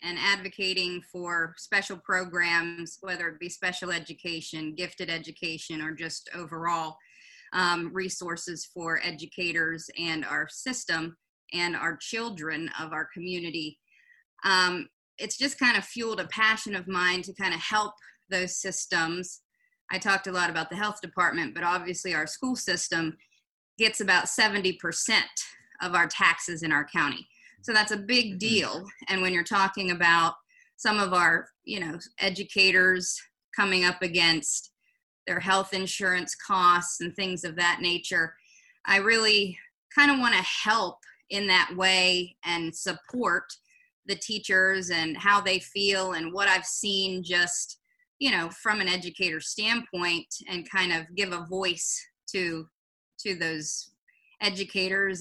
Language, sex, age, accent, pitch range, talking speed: English, female, 30-49, American, 170-200 Hz, 145 wpm